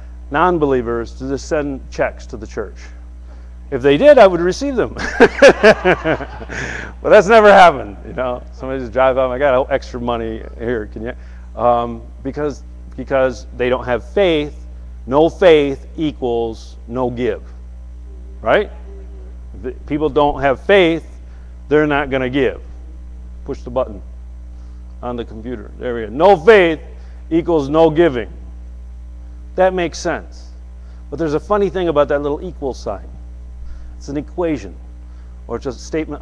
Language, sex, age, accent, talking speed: English, male, 50-69, American, 150 wpm